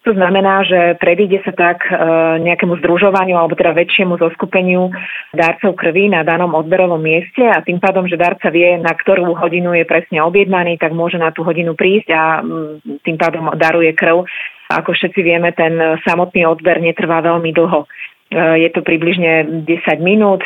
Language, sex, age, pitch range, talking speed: Slovak, female, 30-49, 165-180 Hz, 170 wpm